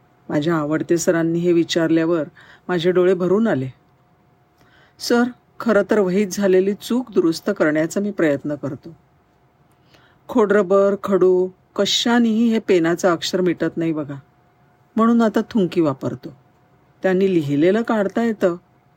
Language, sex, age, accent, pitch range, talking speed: Marathi, female, 50-69, native, 160-200 Hz, 115 wpm